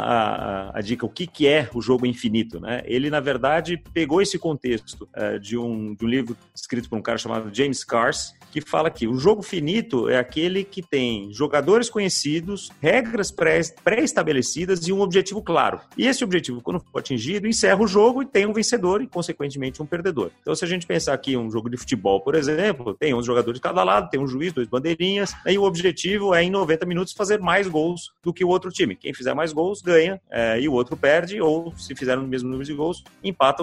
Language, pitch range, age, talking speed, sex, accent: Portuguese, 130-200 Hz, 40-59, 225 wpm, male, Brazilian